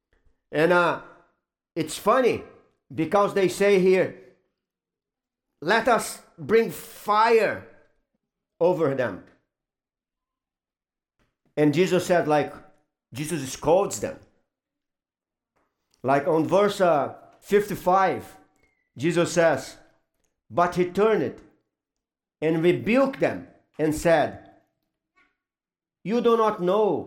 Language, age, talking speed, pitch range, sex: English, 50-69, 90 wpm, 150-200 Hz, male